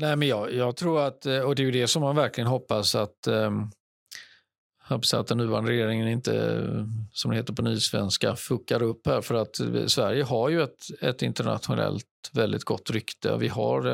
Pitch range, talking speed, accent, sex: 110-140 Hz, 180 wpm, native, male